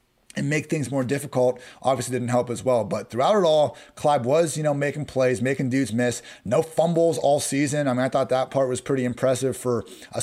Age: 30-49